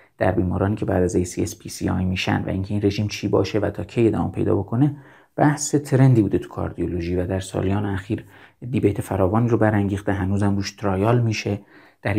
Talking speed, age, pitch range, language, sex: 180 wpm, 30-49, 95-115 Hz, Persian, male